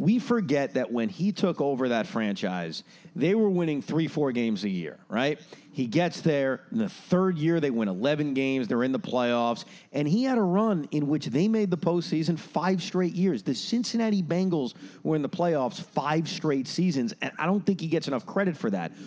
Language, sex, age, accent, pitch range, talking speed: English, male, 40-59, American, 130-190 Hz, 210 wpm